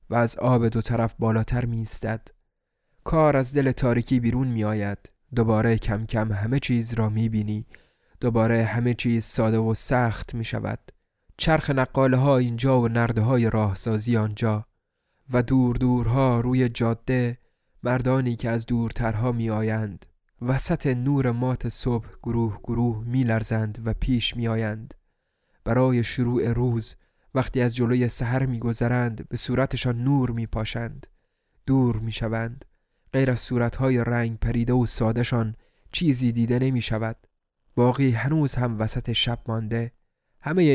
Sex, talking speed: male, 135 wpm